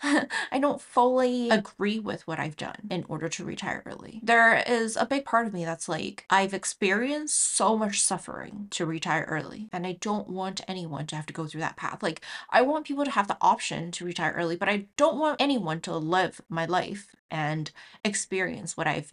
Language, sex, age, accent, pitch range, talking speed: English, female, 20-39, American, 160-205 Hz, 205 wpm